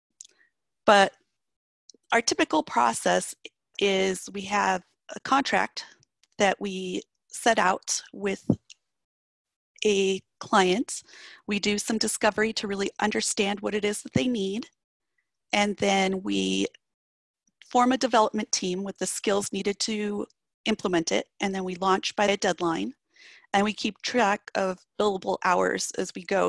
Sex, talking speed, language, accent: female, 135 wpm, English, American